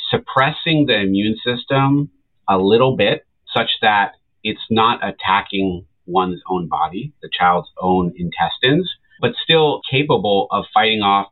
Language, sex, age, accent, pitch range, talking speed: English, male, 40-59, American, 90-125 Hz, 135 wpm